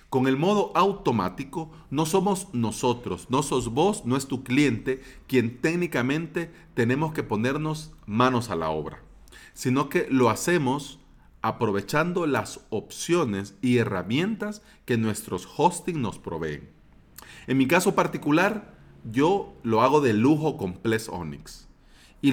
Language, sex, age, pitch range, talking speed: Spanish, male, 40-59, 105-145 Hz, 135 wpm